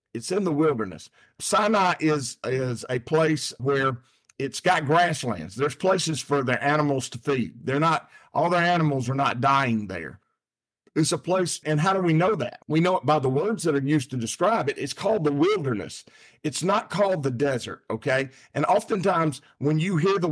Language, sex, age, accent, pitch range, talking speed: English, male, 50-69, American, 135-165 Hz, 195 wpm